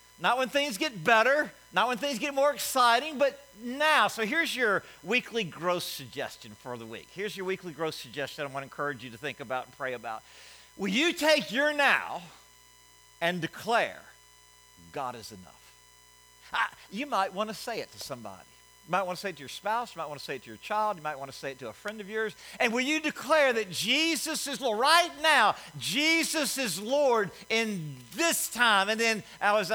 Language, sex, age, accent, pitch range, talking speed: English, male, 50-69, American, 170-255 Hz, 210 wpm